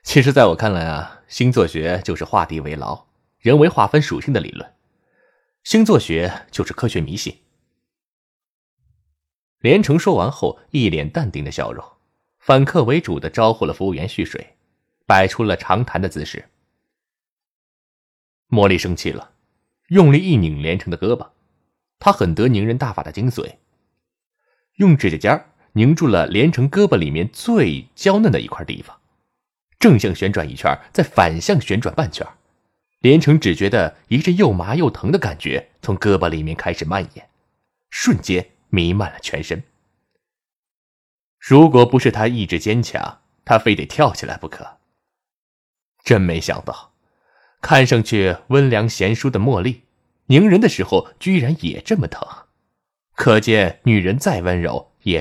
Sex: male